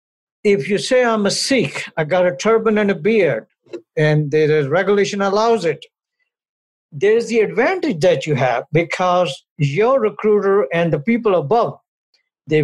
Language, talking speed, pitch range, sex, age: English, 150 wpm, 150-220 Hz, male, 60-79